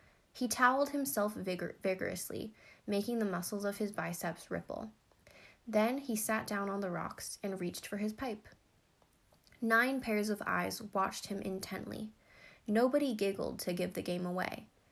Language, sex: English, female